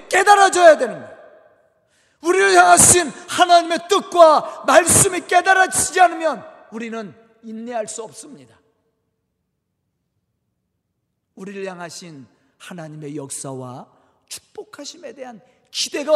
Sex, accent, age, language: male, native, 40-59, Korean